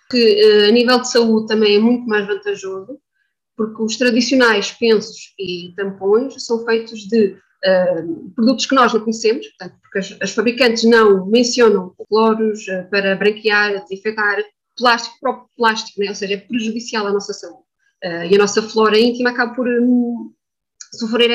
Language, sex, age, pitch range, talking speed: Portuguese, female, 20-39, 205-255 Hz, 150 wpm